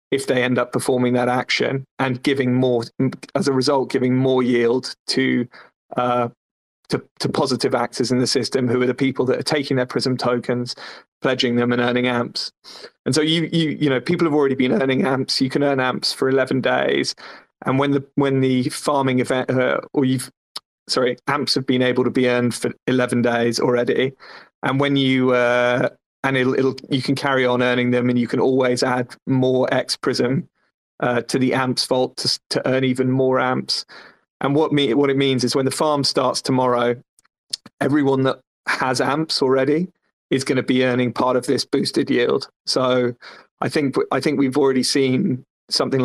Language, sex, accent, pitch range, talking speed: English, male, British, 125-135 Hz, 195 wpm